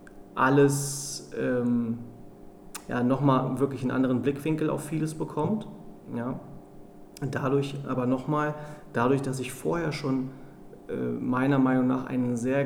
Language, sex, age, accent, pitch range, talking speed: German, male, 30-49, German, 130-150 Hz, 115 wpm